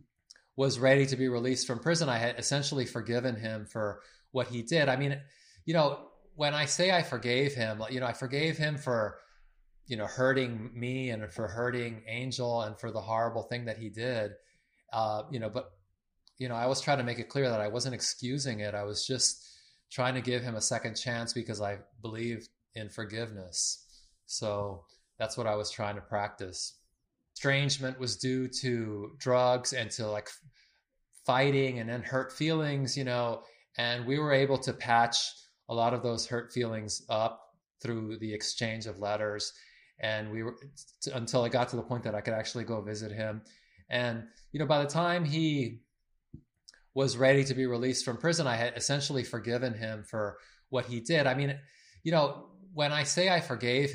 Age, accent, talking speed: 20-39, American, 190 wpm